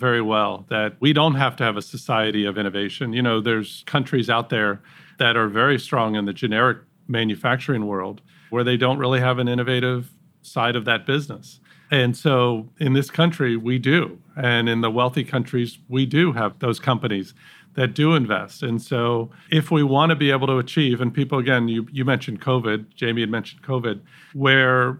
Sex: male